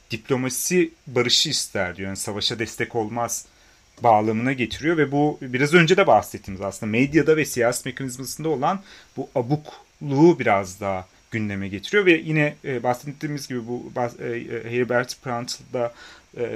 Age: 30-49